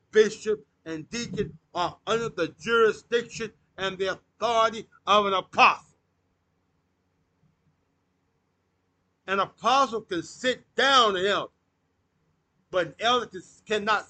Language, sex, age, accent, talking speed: English, male, 50-69, American, 100 wpm